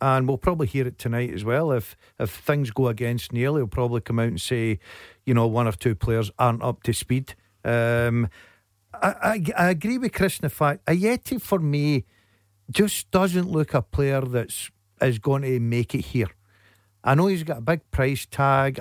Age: 50-69